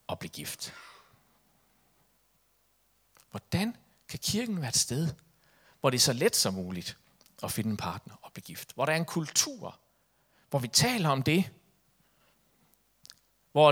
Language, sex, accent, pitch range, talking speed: Danish, male, native, 120-165 Hz, 150 wpm